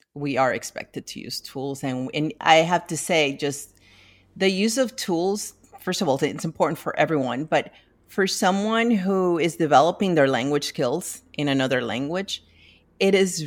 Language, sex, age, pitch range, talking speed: English, female, 40-59, 135-170 Hz, 170 wpm